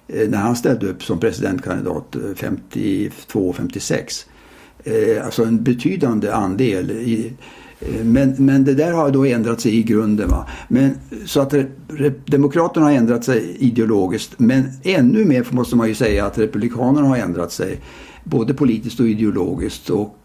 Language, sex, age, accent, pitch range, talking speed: Swedish, male, 60-79, Norwegian, 110-135 Hz, 125 wpm